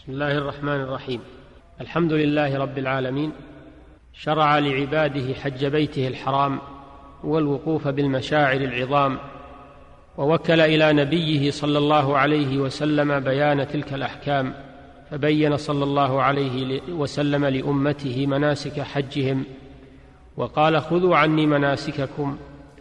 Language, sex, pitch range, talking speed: Arabic, male, 135-145 Hz, 100 wpm